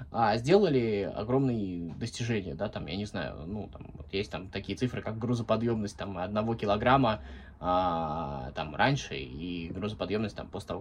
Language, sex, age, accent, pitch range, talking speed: Russian, male, 20-39, native, 90-150 Hz, 150 wpm